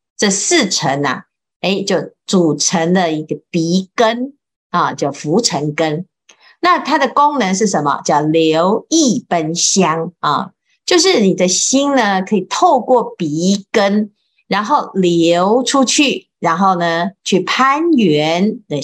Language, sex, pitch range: Chinese, female, 170-245 Hz